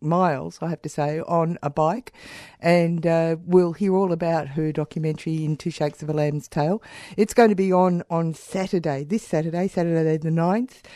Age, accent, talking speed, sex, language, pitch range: 50-69, Australian, 190 wpm, female, English, 155-185 Hz